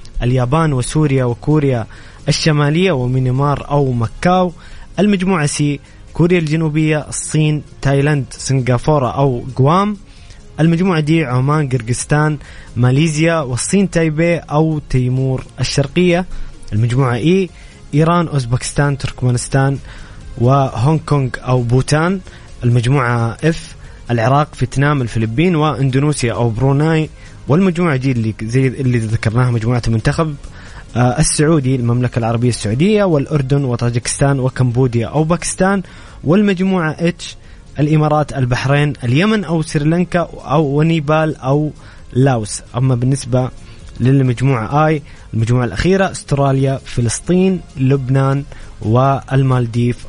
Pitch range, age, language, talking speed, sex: 125-155 Hz, 20-39, English, 95 wpm, male